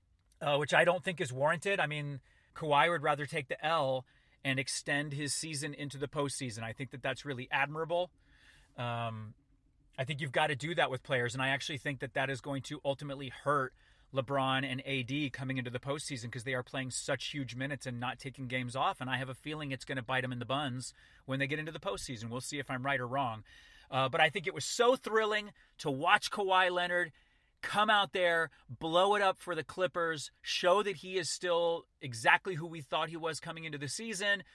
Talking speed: 225 wpm